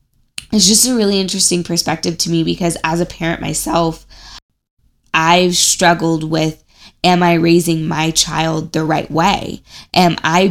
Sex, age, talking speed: female, 20-39, 150 wpm